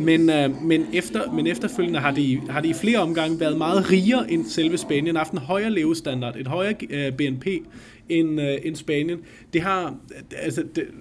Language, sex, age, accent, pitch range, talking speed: Danish, male, 30-49, native, 135-180 Hz, 185 wpm